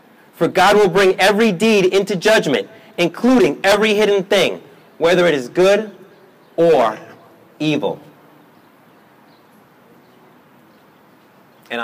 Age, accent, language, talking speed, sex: 30-49, American, English, 95 wpm, male